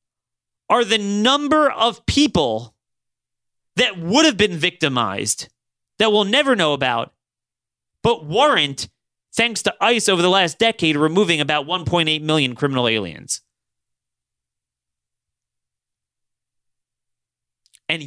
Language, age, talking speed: English, 30-49, 105 wpm